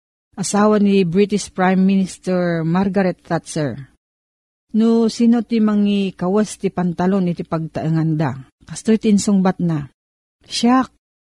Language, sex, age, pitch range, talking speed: Filipino, female, 40-59, 160-215 Hz, 125 wpm